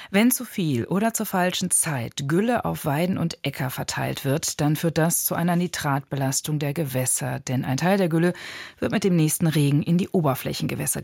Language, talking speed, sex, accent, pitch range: German, 190 wpm, female, German, 145-185 Hz